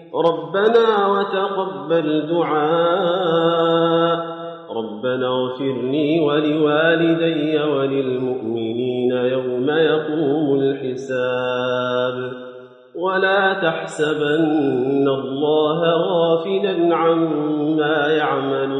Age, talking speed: 40-59, 55 wpm